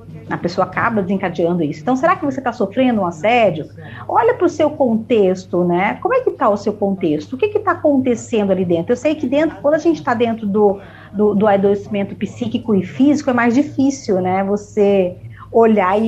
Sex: female